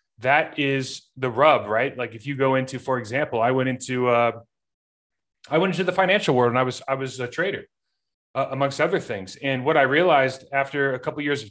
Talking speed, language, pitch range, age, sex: 225 wpm, English, 130-155 Hz, 30-49, male